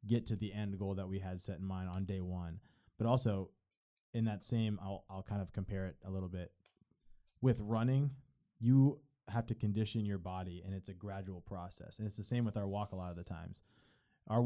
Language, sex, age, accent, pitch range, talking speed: English, male, 20-39, American, 95-110 Hz, 225 wpm